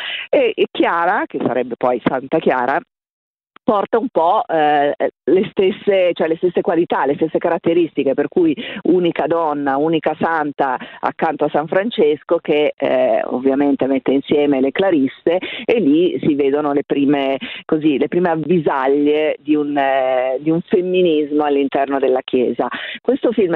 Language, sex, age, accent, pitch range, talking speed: Italian, female, 40-59, native, 140-185 Hz, 150 wpm